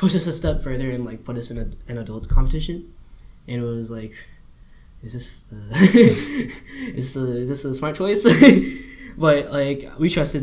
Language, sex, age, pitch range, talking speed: English, male, 10-29, 110-150 Hz, 190 wpm